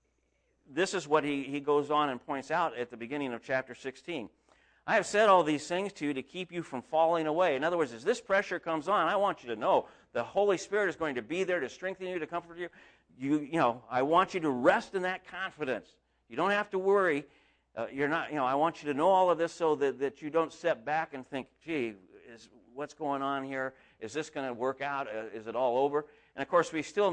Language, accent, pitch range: English, American, 115-165 Hz